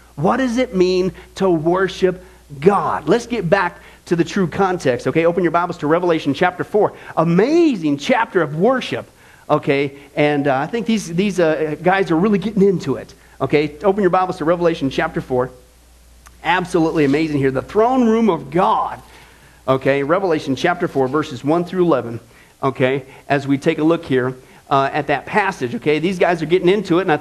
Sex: male